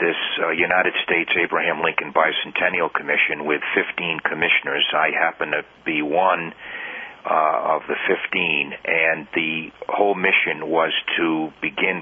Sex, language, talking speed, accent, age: male, English, 135 wpm, American, 50-69